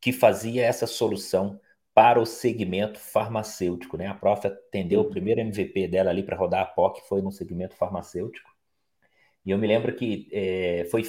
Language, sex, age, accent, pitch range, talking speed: Portuguese, male, 40-59, Brazilian, 100-130 Hz, 175 wpm